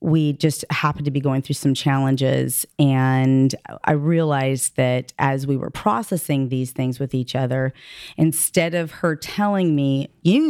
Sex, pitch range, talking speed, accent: female, 145-210 Hz, 160 wpm, American